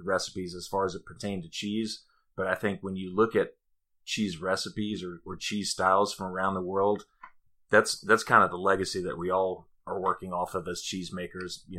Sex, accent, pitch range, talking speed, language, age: male, American, 90-95 Hz, 210 wpm, English, 30-49